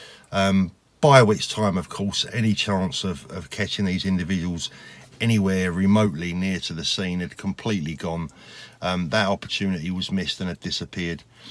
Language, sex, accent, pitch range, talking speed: English, male, British, 95-110 Hz, 155 wpm